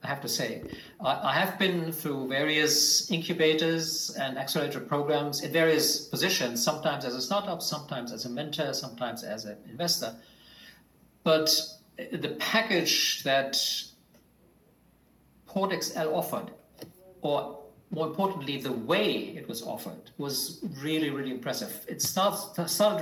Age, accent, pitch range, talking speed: 50-69, German, 130-165 Hz, 130 wpm